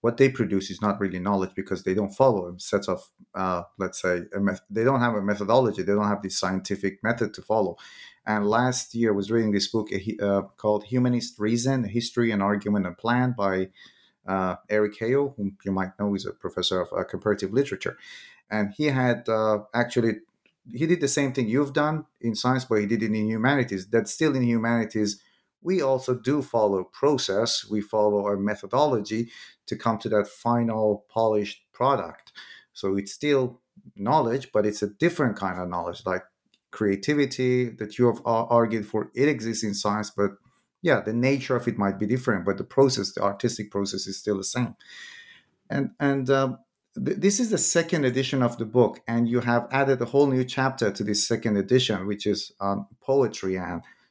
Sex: male